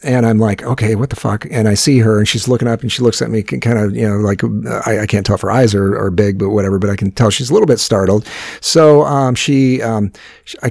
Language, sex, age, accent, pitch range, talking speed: English, male, 50-69, American, 100-135 Hz, 290 wpm